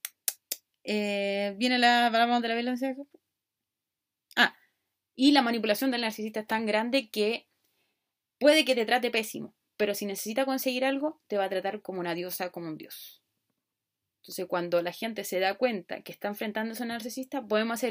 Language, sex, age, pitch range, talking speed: Spanish, female, 20-39, 205-260 Hz, 180 wpm